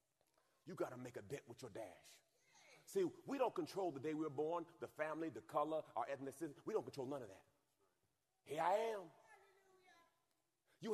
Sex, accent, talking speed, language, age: male, American, 185 wpm, English, 40-59